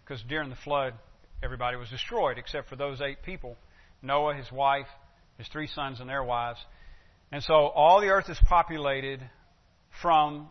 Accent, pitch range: American, 120-155 Hz